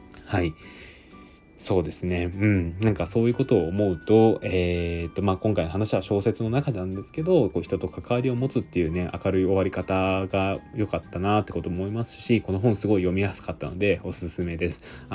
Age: 20-39